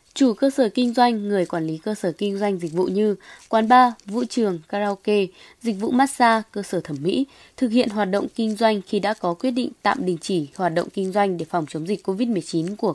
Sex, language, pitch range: female, Vietnamese, 185-245 Hz